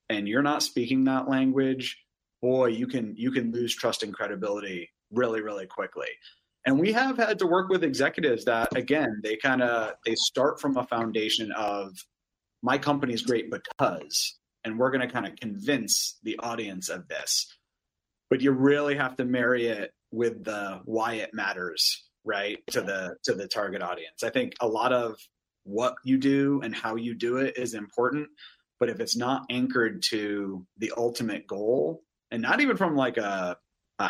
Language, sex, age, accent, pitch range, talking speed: English, male, 30-49, American, 110-135 Hz, 180 wpm